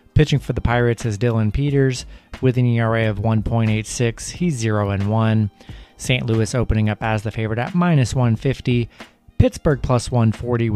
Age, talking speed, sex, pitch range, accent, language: 30-49, 155 wpm, male, 110-130 Hz, American, English